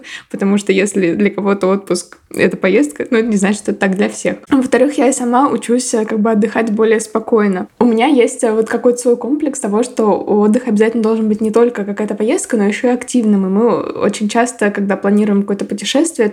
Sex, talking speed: female, 200 wpm